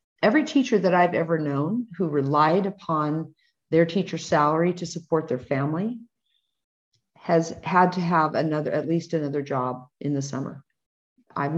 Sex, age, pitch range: female, 50-69, 140-175 Hz